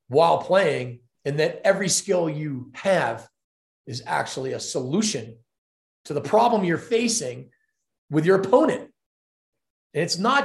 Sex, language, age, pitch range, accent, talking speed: male, English, 30-49, 135-190 Hz, American, 130 wpm